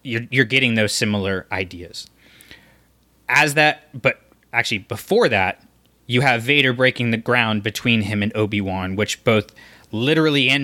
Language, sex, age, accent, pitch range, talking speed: English, male, 20-39, American, 105-125 Hz, 145 wpm